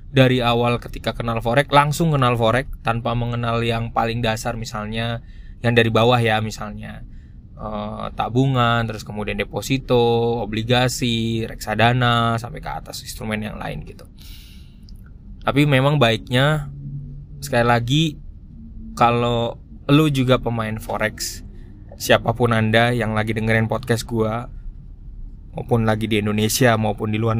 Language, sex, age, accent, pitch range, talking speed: Indonesian, male, 20-39, native, 105-130 Hz, 125 wpm